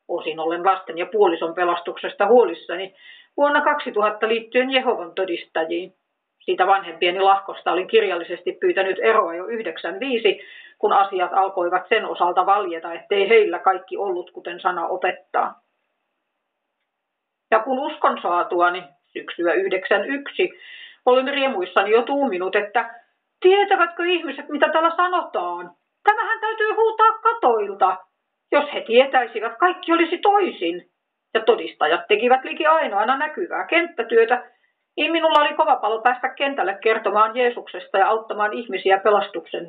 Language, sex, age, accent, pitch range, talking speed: Finnish, female, 40-59, native, 190-315 Hz, 120 wpm